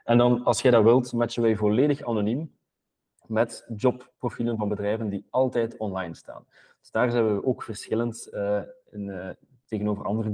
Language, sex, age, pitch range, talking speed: Dutch, male, 20-39, 105-125 Hz, 170 wpm